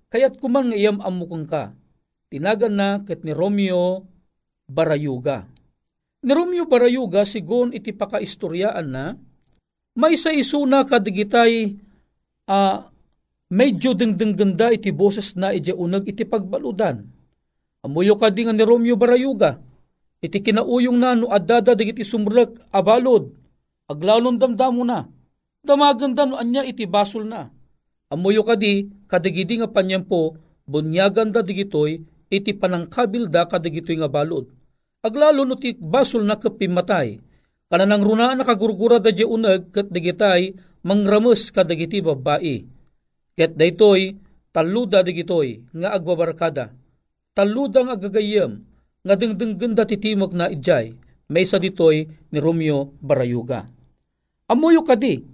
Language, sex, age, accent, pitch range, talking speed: Filipino, male, 50-69, native, 170-230 Hz, 115 wpm